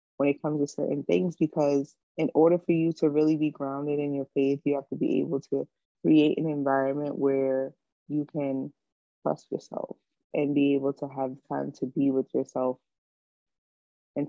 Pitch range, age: 140-155 Hz, 20-39